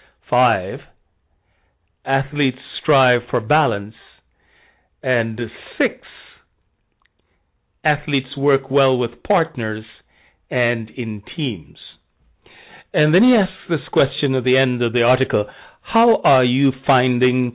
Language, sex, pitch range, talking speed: English, male, 105-135 Hz, 105 wpm